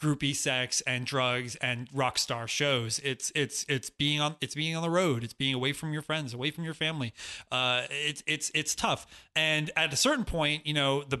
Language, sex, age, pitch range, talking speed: English, male, 30-49, 125-150 Hz, 220 wpm